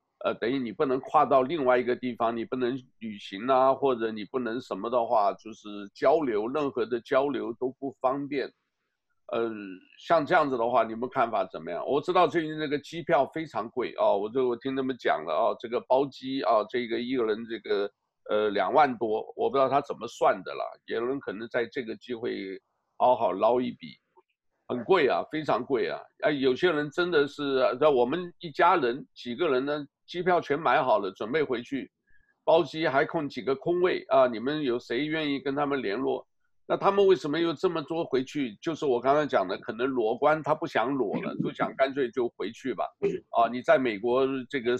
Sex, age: male, 50-69